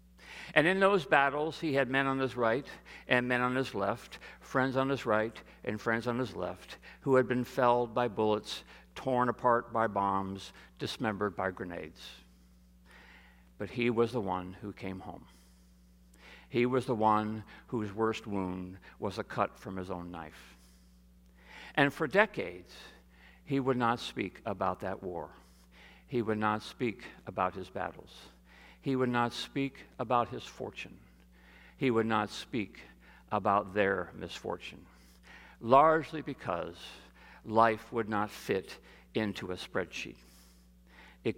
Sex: male